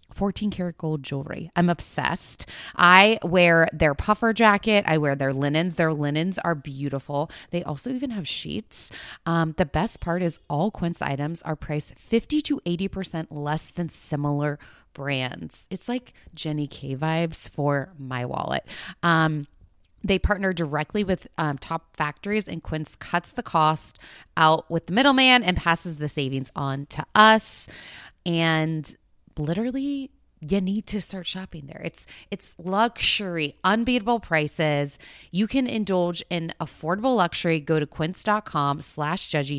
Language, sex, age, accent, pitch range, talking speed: English, female, 20-39, American, 150-190 Hz, 145 wpm